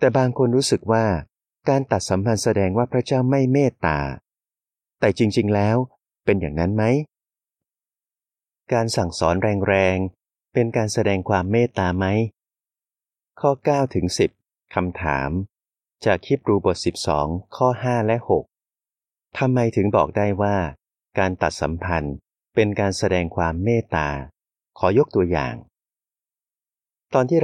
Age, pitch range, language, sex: 30-49, 90-120 Hz, Thai, male